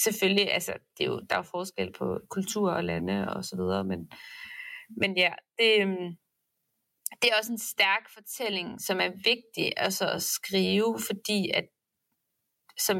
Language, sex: Danish, female